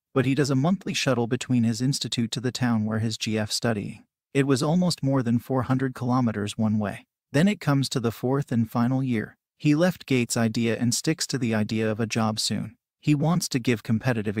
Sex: male